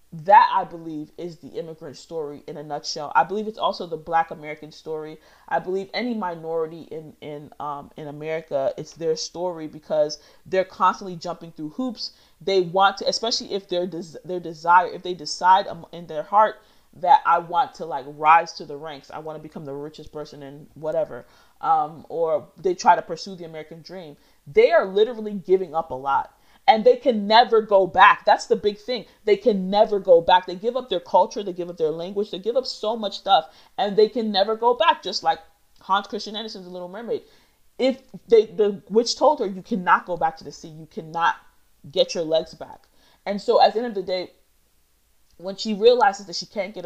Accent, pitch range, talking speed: American, 160-215 Hz, 210 wpm